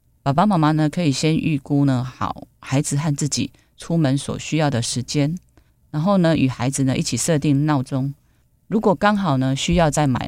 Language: Chinese